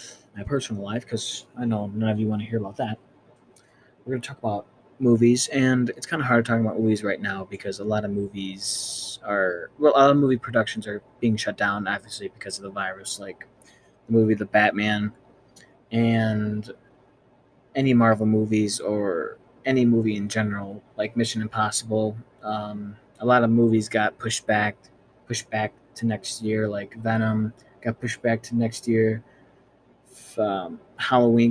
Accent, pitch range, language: American, 105-125 Hz, English